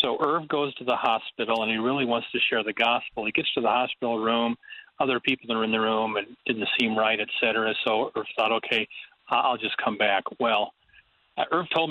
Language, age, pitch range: English, 40-59, 115-150 Hz